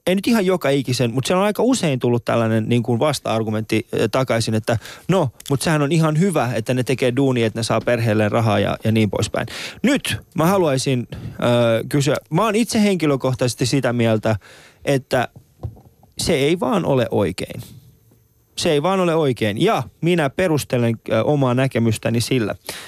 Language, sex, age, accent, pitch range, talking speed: Finnish, male, 20-39, native, 110-135 Hz, 170 wpm